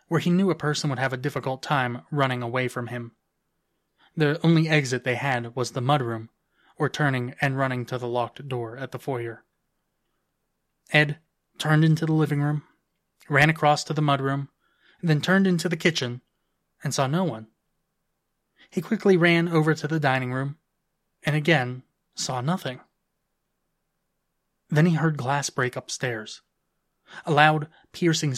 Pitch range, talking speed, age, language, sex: 130-160 Hz, 155 wpm, 20-39, English, male